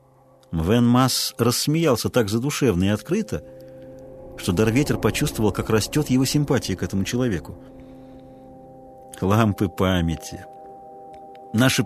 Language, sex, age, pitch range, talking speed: Russian, male, 50-69, 105-145 Hz, 100 wpm